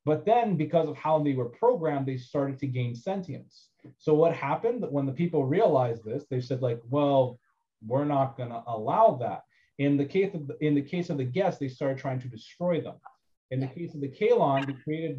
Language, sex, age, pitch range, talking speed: English, male, 30-49, 125-155 Hz, 220 wpm